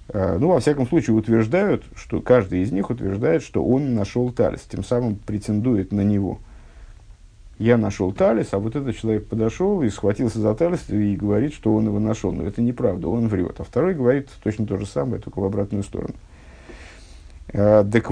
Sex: male